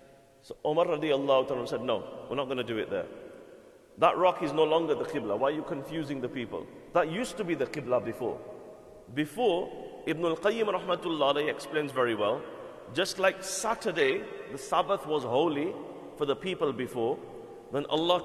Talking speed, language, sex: 170 wpm, English, male